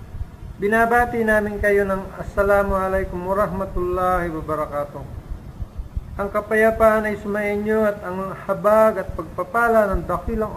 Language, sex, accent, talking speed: Filipino, male, native, 110 wpm